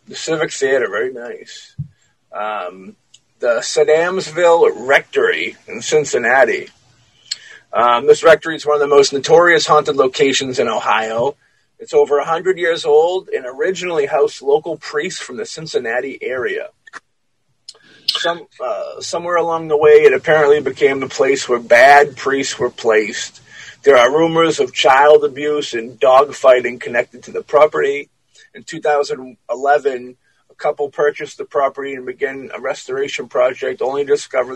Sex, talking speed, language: male, 140 wpm, English